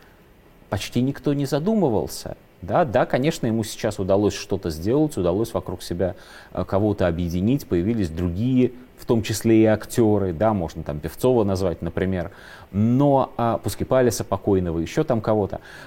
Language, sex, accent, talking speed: Russian, male, native, 135 wpm